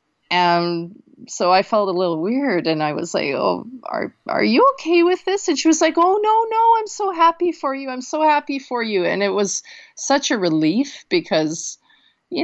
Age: 40-59